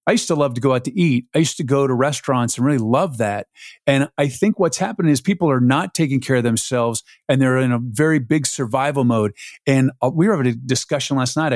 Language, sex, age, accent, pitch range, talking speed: English, male, 50-69, American, 130-165 Hz, 250 wpm